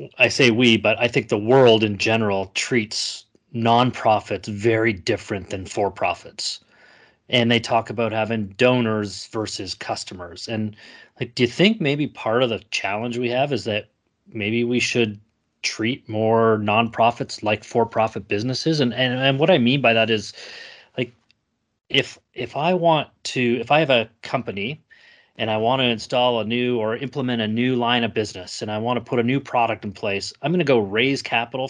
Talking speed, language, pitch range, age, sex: 185 wpm, English, 110-125 Hz, 30-49, male